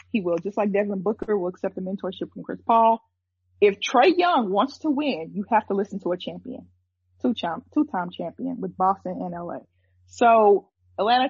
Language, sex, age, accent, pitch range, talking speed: English, female, 20-39, American, 180-225 Hz, 180 wpm